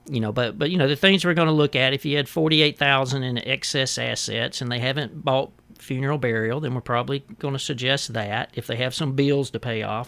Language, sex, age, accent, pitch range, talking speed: English, male, 40-59, American, 110-140 Hz, 255 wpm